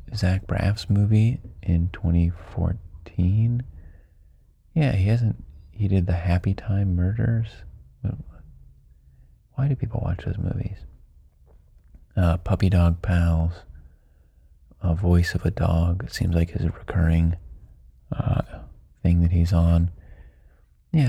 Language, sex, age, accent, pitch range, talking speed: English, male, 30-49, American, 85-105 Hz, 110 wpm